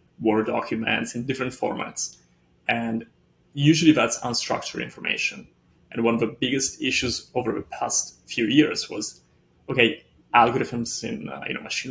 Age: 30-49